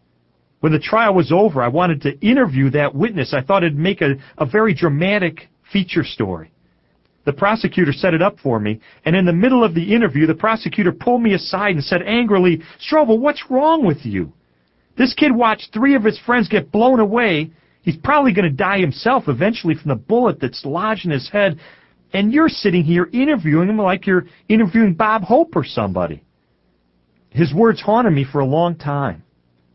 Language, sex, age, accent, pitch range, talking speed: English, male, 40-59, American, 125-200 Hz, 190 wpm